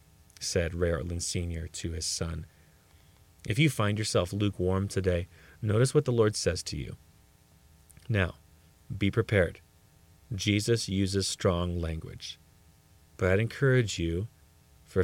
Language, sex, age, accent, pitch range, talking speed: English, male, 30-49, American, 85-105 Hz, 130 wpm